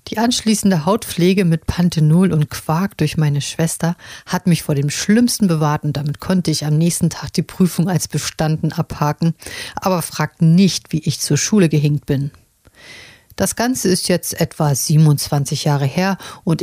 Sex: female